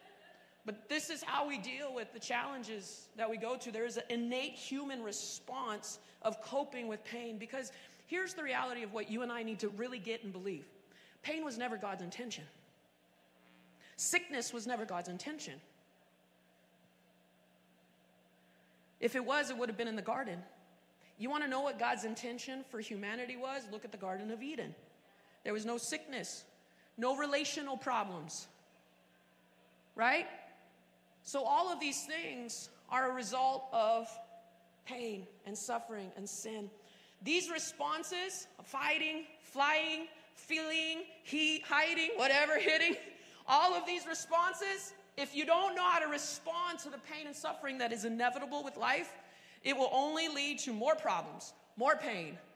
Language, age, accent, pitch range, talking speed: English, 30-49, American, 210-290 Hz, 155 wpm